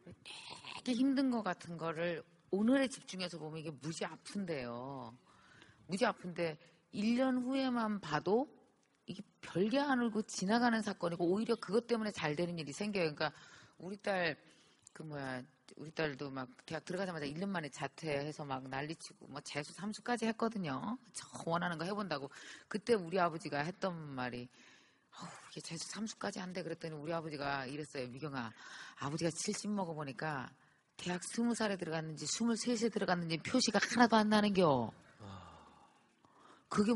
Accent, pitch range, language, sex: native, 150-210 Hz, Korean, female